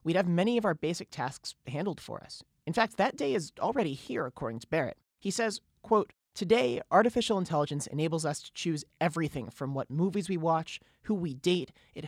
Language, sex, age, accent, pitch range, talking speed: English, male, 30-49, American, 145-190 Hz, 200 wpm